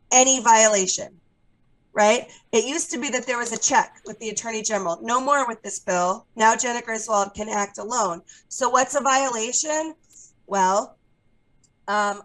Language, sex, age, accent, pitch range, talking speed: English, female, 30-49, American, 205-245 Hz, 160 wpm